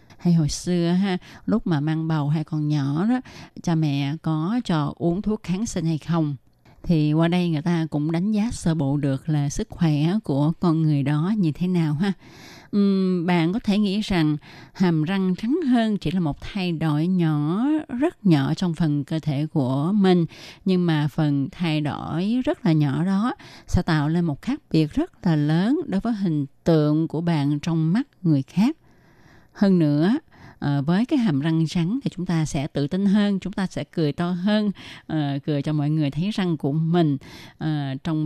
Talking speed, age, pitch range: 195 wpm, 20-39, 150-195 Hz